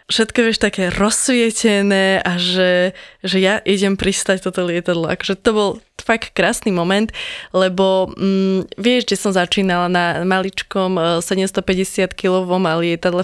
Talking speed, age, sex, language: 130 wpm, 20-39, female, Slovak